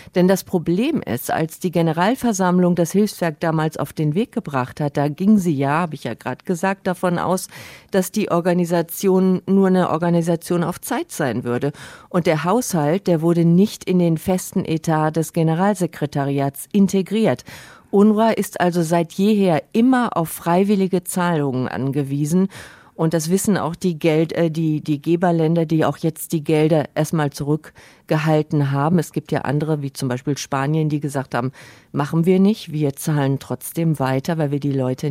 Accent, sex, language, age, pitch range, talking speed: German, female, German, 50-69, 150-185 Hz, 170 wpm